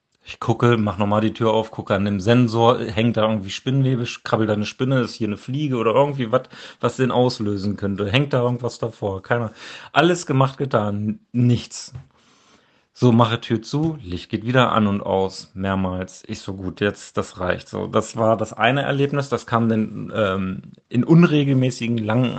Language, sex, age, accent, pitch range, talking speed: German, male, 40-59, German, 105-135 Hz, 185 wpm